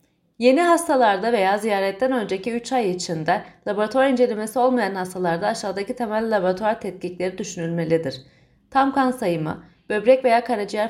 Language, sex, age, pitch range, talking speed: Turkish, female, 40-59, 185-240 Hz, 125 wpm